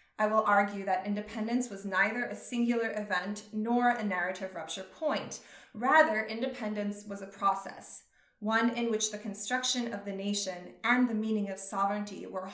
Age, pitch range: 20-39, 200-235 Hz